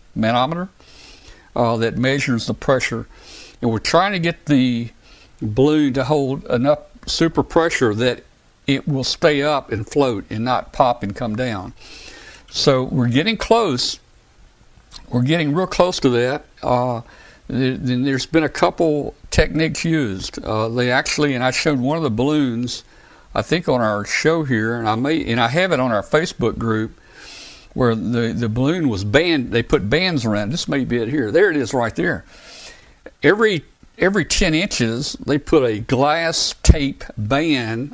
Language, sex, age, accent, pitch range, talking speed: English, male, 60-79, American, 120-155 Hz, 170 wpm